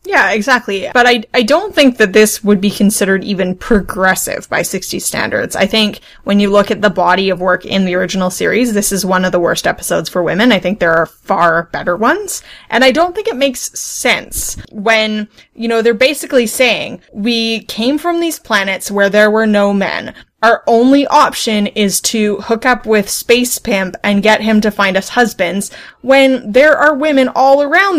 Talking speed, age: 200 wpm, 20-39